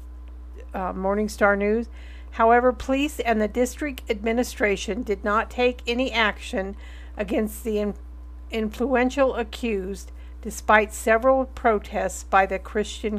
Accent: American